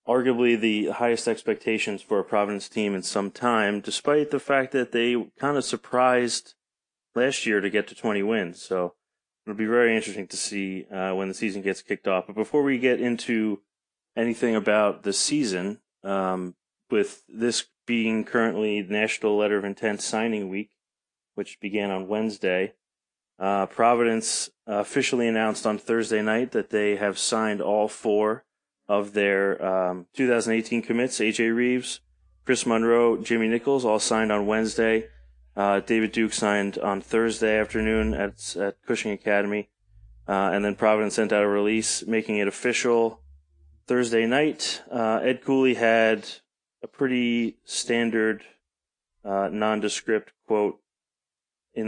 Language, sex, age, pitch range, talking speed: English, male, 30-49, 100-115 Hz, 145 wpm